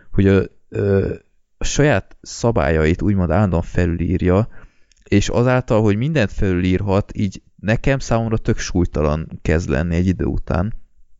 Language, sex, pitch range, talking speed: Hungarian, male, 85-110 Hz, 130 wpm